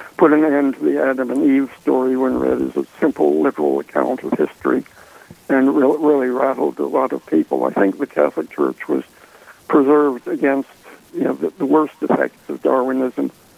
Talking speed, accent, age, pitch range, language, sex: 185 wpm, American, 60-79, 125-150 Hz, English, male